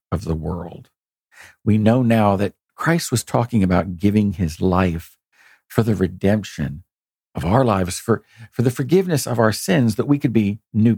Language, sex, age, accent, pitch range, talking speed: English, male, 50-69, American, 100-145 Hz, 175 wpm